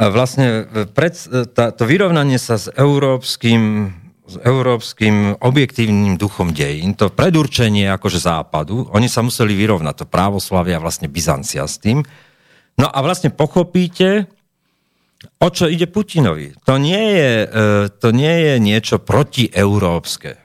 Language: Slovak